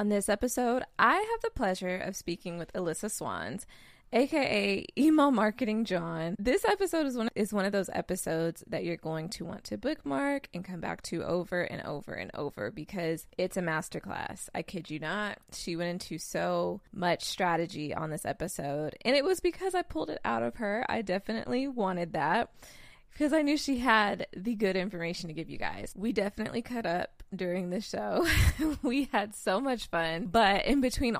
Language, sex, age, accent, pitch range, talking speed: English, female, 20-39, American, 170-215 Hz, 190 wpm